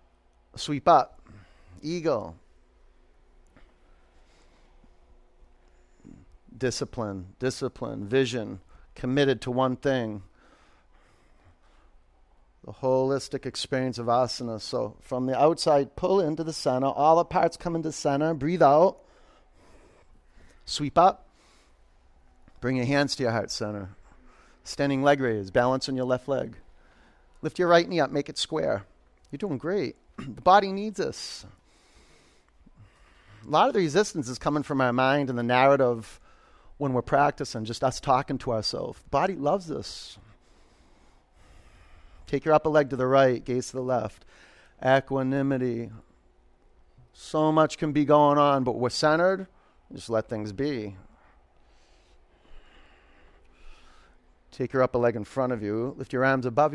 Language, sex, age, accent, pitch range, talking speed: English, male, 40-59, American, 90-145 Hz, 130 wpm